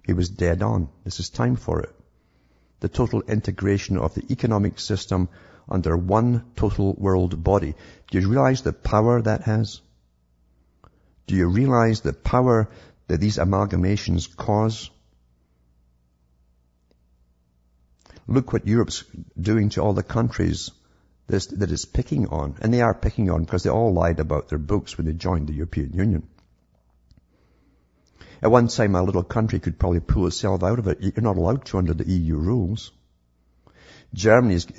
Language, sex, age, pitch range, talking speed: English, male, 60-79, 80-105 Hz, 150 wpm